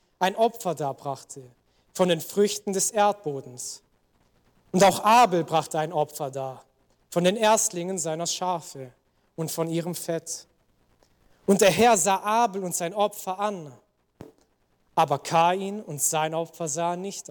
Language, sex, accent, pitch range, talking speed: German, male, German, 140-205 Hz, 140 wpm